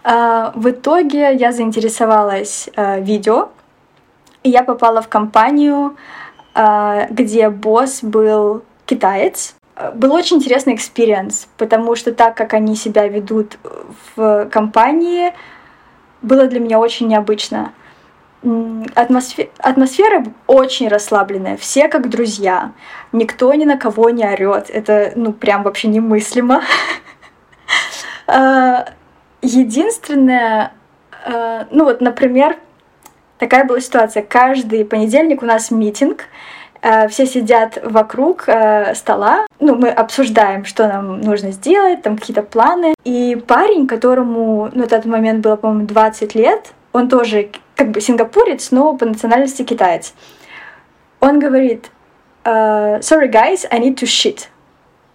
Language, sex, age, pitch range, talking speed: Russian, female, 20-39, 220-265 Hz, 115 wpm